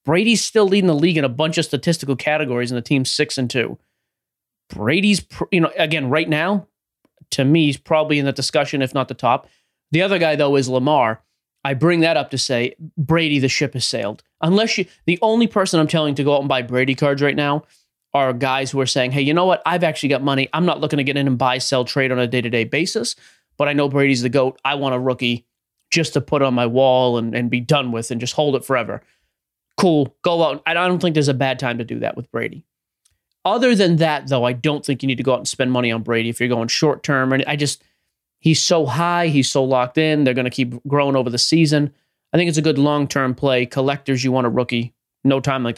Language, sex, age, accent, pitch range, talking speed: English, male, 30-49, American, 130-160 Hz, 250 wpm